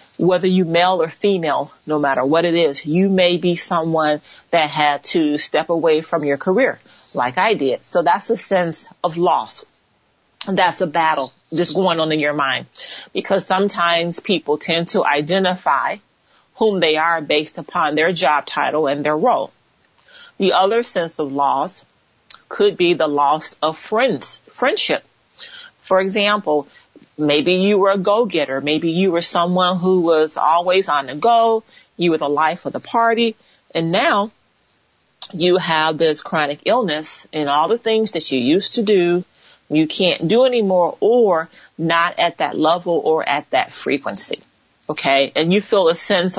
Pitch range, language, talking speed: 155-195 Hz, English, 165 wpm